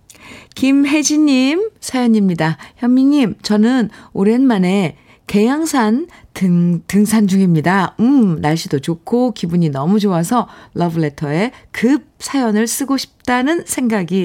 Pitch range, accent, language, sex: 165-230 Hz, native, Korean, female